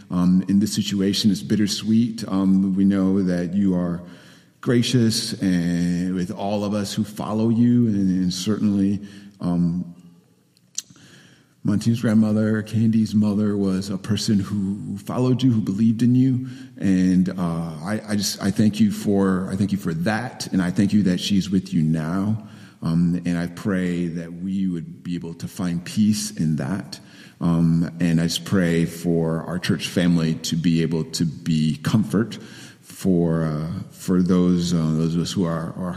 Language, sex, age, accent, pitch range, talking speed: English, male, 40-59, American, 85-105 Hz, 170 wpm